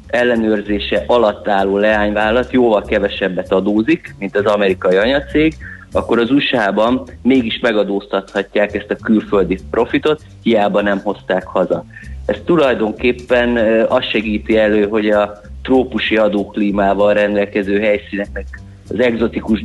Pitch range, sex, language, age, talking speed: 100-115 Hz, male, Hungarian, 30-49, 115 wpm